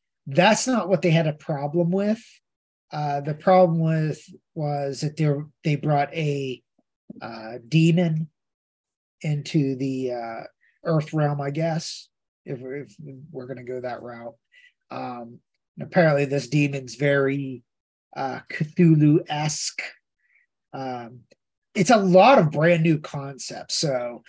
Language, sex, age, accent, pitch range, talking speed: English, male, 30-49, American, 135-170 Hz, 130 wpm